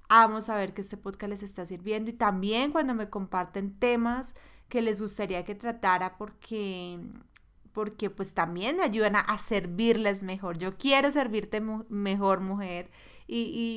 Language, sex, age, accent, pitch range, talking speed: Spanish, female, 30-49, Colombian, 185-220 Hz, 165 wpm